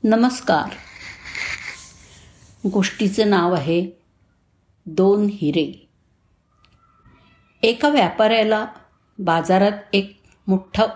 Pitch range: 170-225 Hz